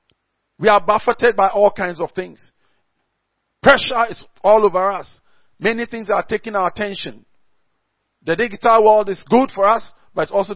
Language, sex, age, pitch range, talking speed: English, male, 50-69, 185-240 Hz, 165 wpm